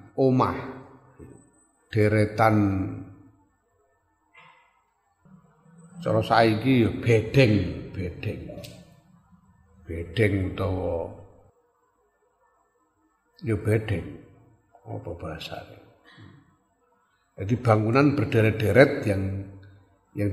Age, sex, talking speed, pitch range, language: 50-69, male, 55 wpm, 105-150 Hz, Indonesian